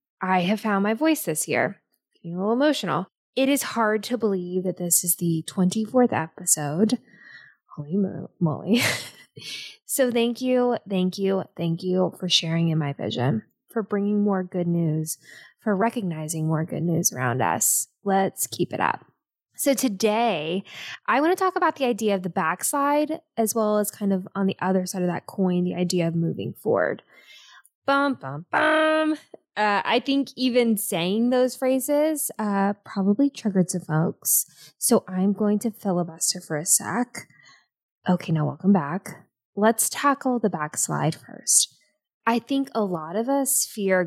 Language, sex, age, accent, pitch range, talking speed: English, female, 10-29, American, 170-235 Hz, 160 wpm